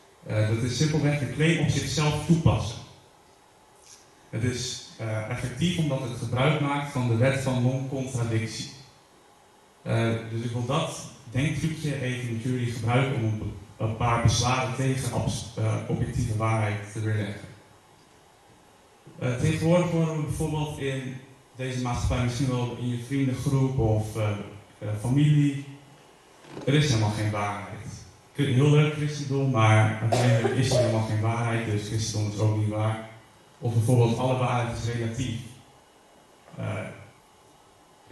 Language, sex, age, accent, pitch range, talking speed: Dutch, male, 30-49, Dutch, 110-135 Hz, 140 wpm